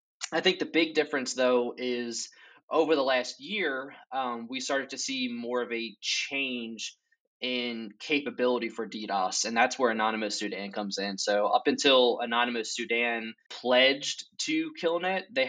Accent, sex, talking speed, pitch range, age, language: American, male, 155 wpm, 115-160 Hz, 20-39, English